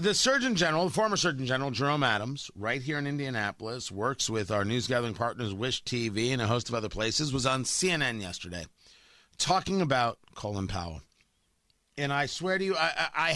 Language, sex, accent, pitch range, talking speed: English, male, American, 115-180 Hz, 190 wpm